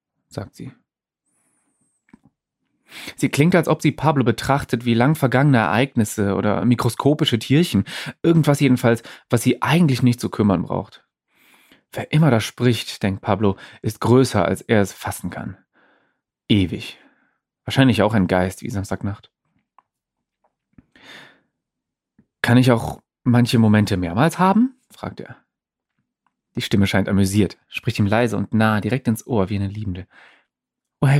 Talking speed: 135 wpm